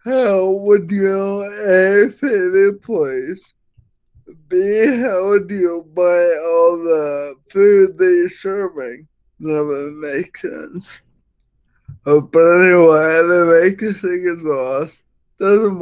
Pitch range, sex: 155-195 Hz, male